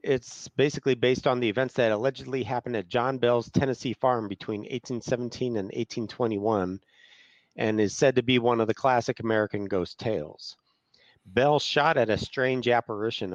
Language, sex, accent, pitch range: English, male, American, 105-130 Hz